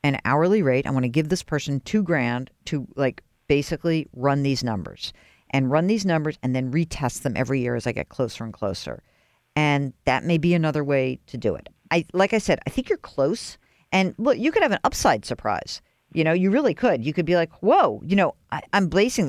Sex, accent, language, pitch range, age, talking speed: female, American, English, 150-205 Hz, 50-69, 225 wpm